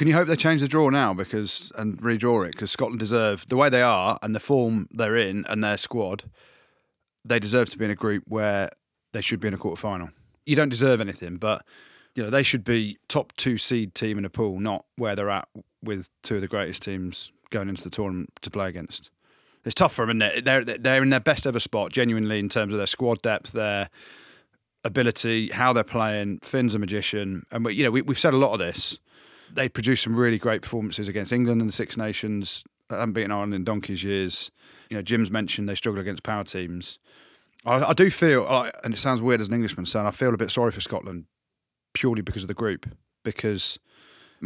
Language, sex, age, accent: English, male, 30-49, British